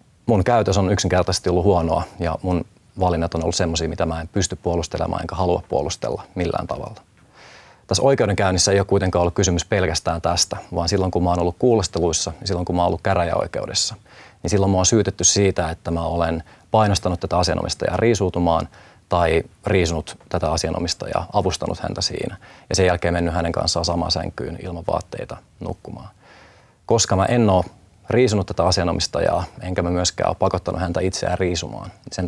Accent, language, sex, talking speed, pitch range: native, Finnish, male, 165 wpm, 85-100 Hz